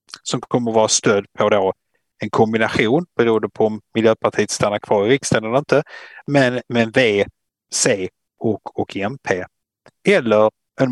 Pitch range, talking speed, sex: 105-130 Hz, 155 wpm, male